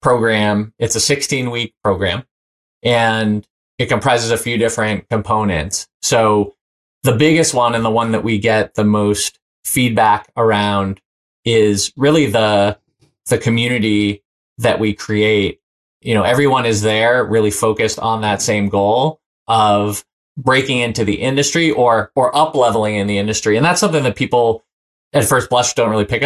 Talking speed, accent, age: 160 wpm, American, 30-49